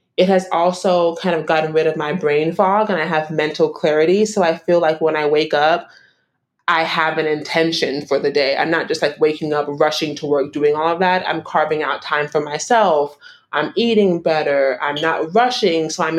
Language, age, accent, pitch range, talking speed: English, 30-49, American, 150-195 Hz, 215 wpm